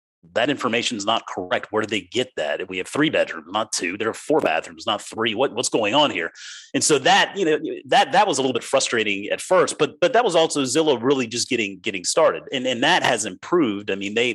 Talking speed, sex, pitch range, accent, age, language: 250 wpm, male, 95-120 Hz, American, 30-49, English